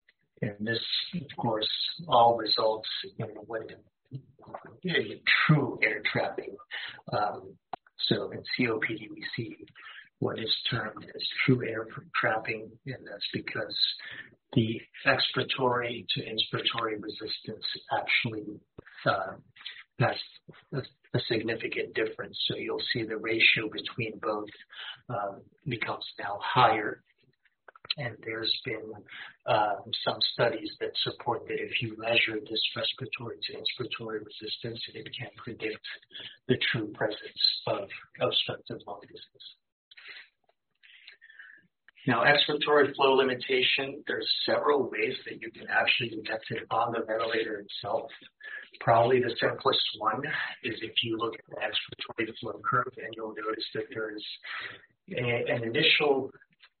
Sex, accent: male, American